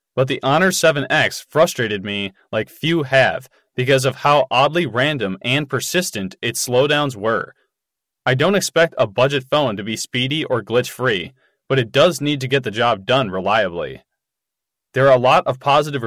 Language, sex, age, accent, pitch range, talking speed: English, male, 20-39, American, 120-155 Hz, 170 wpm